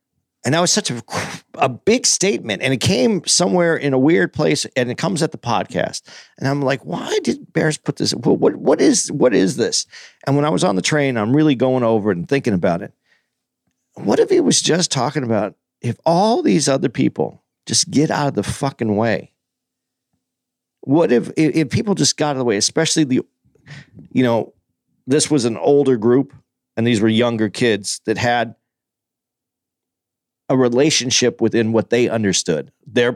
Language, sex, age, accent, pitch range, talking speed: English, male, 50-69, American, 115-155 Hz, 190 wpm